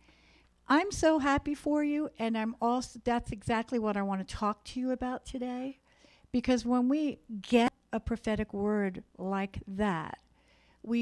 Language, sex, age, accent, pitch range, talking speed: English, female, 60-79, American, 200-285 Hz, 160 wpm